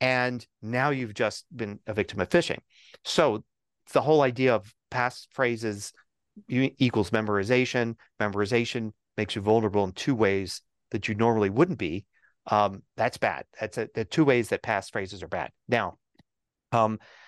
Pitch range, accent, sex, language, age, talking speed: 105-125 Hz, American, male, English, 40-59, 155 wpm